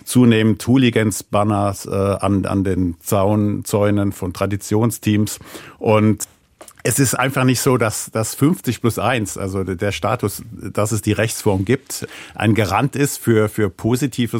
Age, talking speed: 50-69, 145 wpm